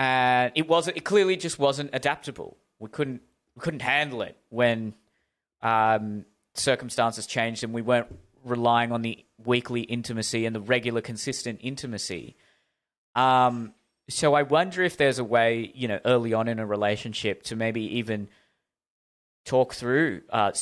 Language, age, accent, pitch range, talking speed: English, 20-39, Australian, 105-120 Hz, 150 wpm